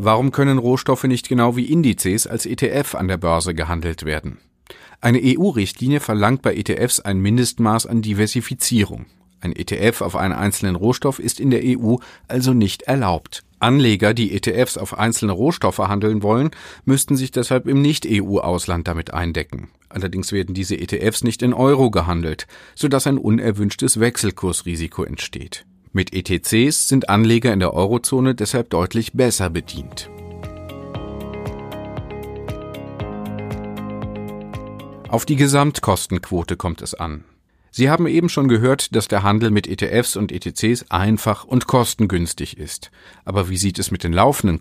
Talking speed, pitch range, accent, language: 140 wpm, 90-125 Hz, German, German